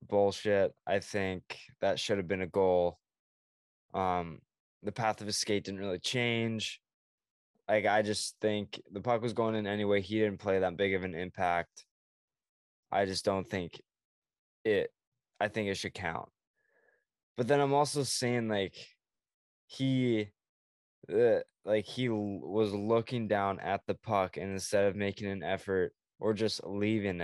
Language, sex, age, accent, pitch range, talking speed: English, male, 20-39, American, 95-110 Hz, 150 wpm